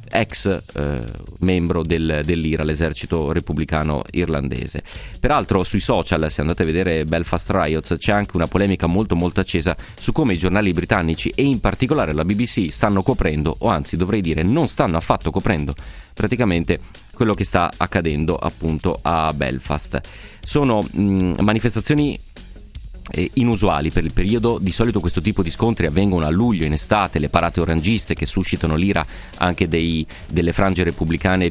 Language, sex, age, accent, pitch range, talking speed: Italian, male, 30-49, native, 80-100 Hz, 150 wpm